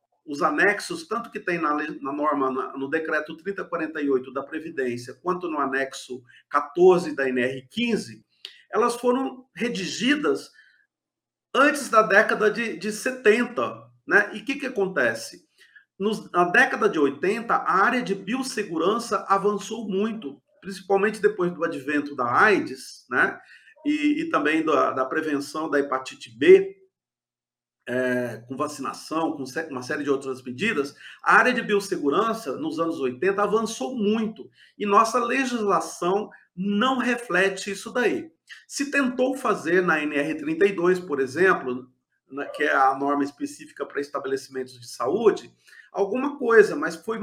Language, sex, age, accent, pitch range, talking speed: Portuguese, male, 40-59, Brazilian, 145-225 Hz, 130 wpm